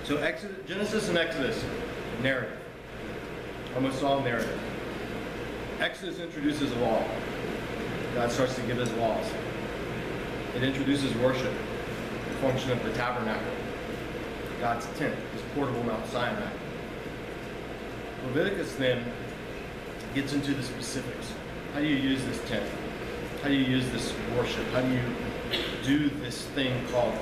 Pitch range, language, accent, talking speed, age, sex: 125-155 Hz, English, American, 125 wpm, 40-59, male